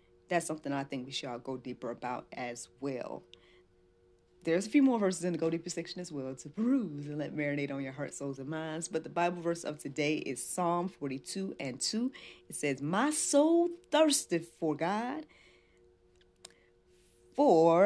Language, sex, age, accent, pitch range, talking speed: English, female, 40-59, American, 115-190 Hz, 180 wpm